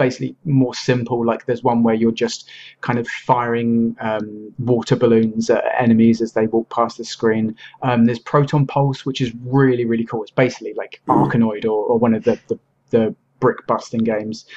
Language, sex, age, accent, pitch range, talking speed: English, male, 30-49, British, 115-130 Hz, 190 wpm